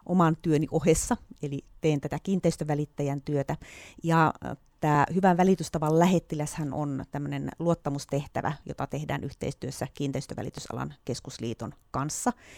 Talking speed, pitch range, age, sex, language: 105 wpm, 145-170 Hz, 30-49, female, Finnish